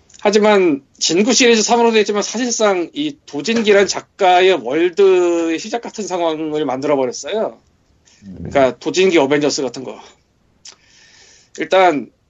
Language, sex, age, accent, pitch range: Korean, male, 40-59, native, 140-230 Hz